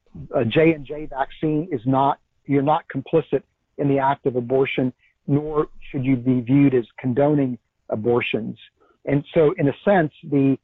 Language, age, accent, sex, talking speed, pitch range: English, 50-69, American, male, 165 wpm, 130-150 Hz